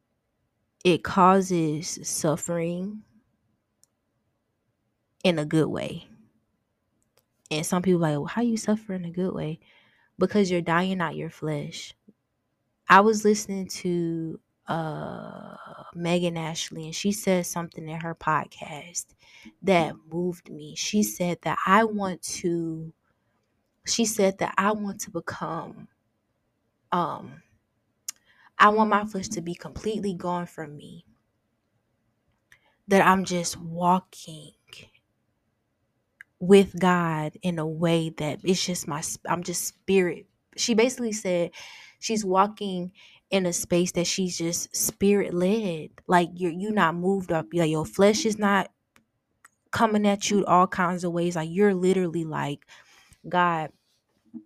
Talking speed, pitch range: 130 wpm, 155-190 Hz